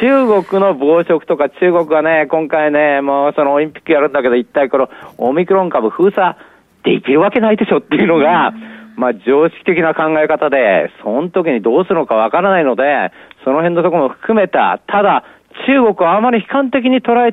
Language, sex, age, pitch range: Japanese, male, 40-59, 130-195 Hz